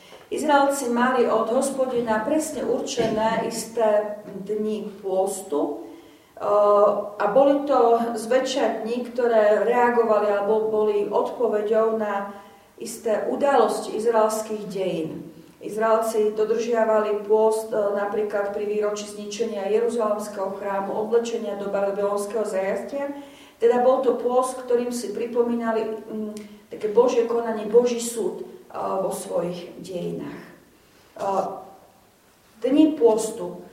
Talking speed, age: 95 wpm, 40-59